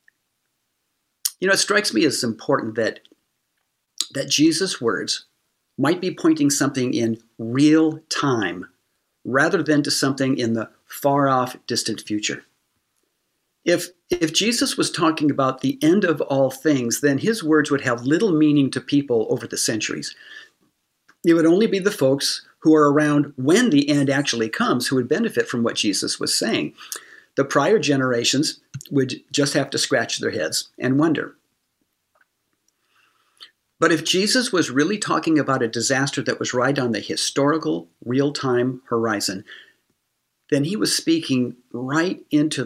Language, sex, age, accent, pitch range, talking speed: English, male, 50-69, American, 130-165 Hz, 150 wpm